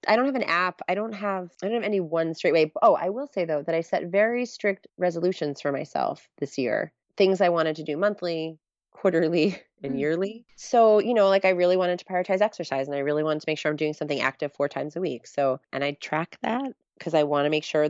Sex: female